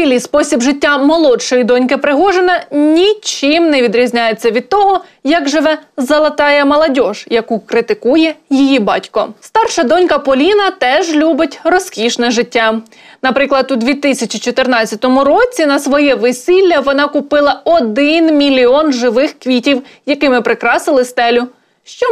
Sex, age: female, 20-39